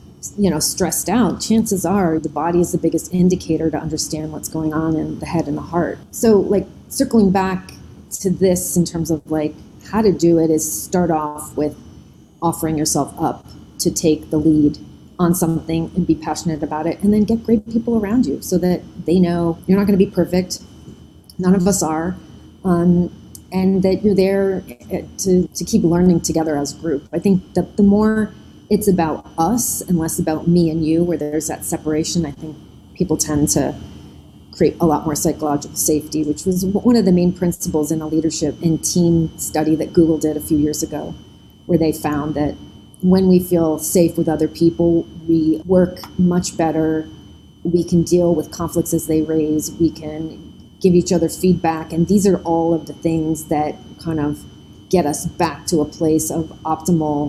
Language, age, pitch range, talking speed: English, 30-49, 155-180 Hz, 195 wpm